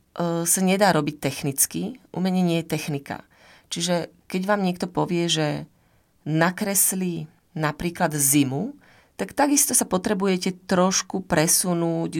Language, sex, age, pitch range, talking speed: Slovak, female, 30-49, 150-185 Hz, 115 wpm